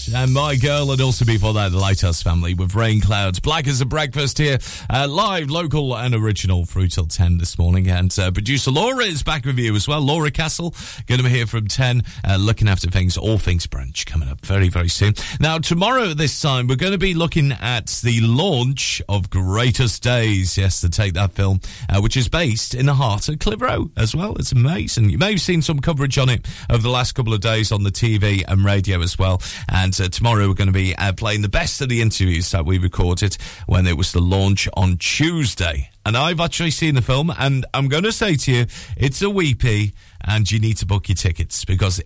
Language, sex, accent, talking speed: English, male, British, 230 wpm